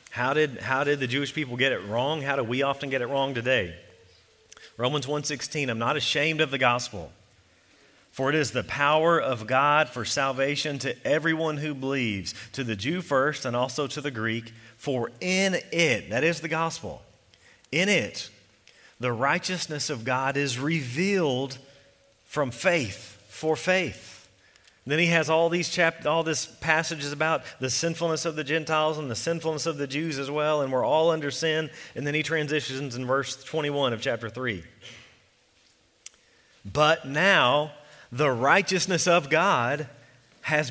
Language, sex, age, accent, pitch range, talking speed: English, male, 40-59, American, 130-165 Hz, 165 wpm